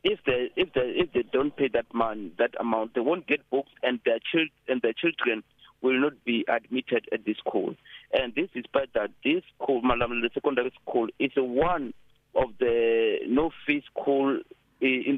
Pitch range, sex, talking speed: 125-175 Hz, male, 190 wpm